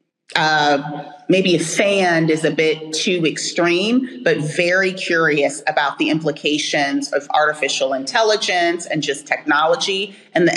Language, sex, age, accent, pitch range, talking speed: English, female, 30-49, American, 155-200 Hz, 130 wpm